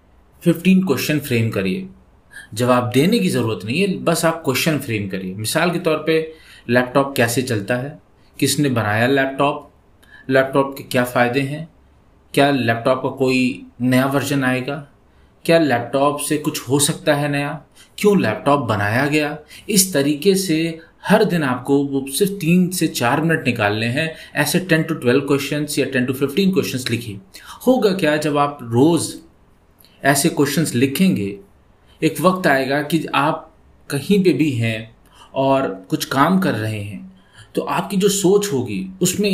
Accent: native